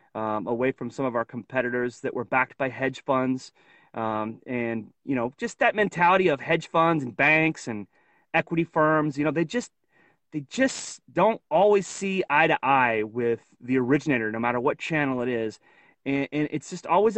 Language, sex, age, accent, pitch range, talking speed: English, male, 30-49, American, 125-175 Hz, 185 wpm